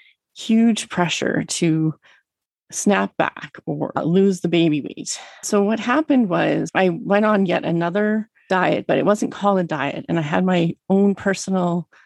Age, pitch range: 30-49, 170-210 Hz